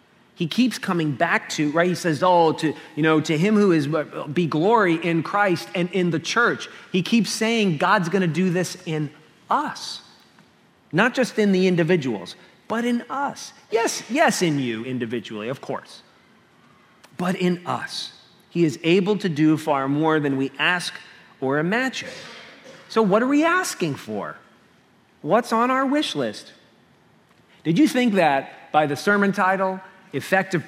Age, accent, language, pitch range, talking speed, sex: 40-59, American, English, 160-215 Hz, 160 wpm, male